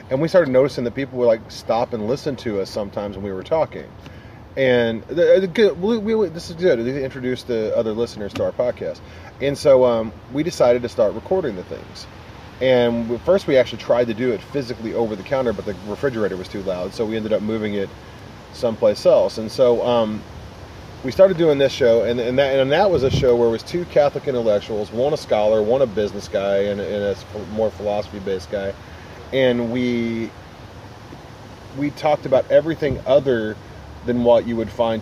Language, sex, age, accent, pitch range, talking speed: English, male, 30-49, American, 105-130 Hz, 190 wpm